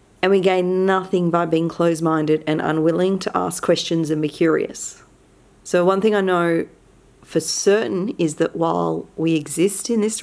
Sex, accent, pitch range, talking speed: female, Australian, 165-195 Hz, 170 wpm